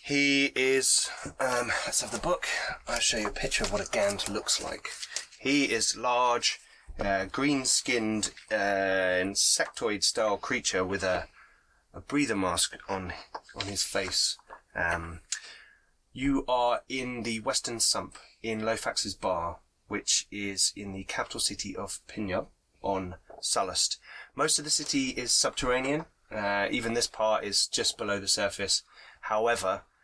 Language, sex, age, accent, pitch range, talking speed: English, male, 20-39, British, 100-130 Hz, 145 wpm